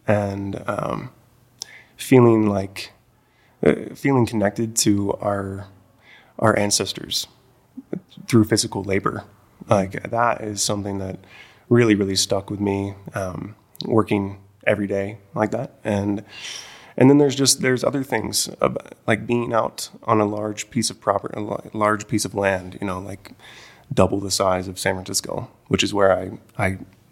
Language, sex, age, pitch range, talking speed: English, male, 20-39, 100-115 Hz, 150 wpm